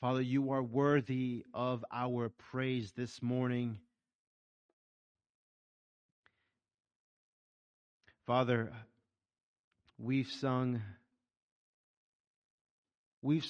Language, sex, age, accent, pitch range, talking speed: English, male, 40-59, American, 115-135 Hz, 60 wpm